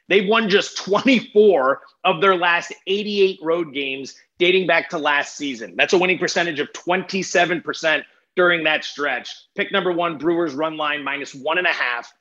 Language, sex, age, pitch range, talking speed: English, male, 30-49, 170-205 Hz, 170 wpm